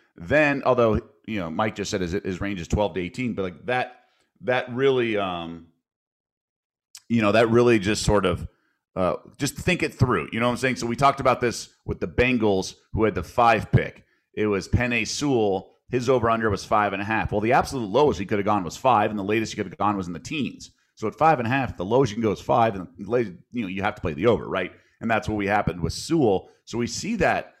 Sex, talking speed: male, 260 wpm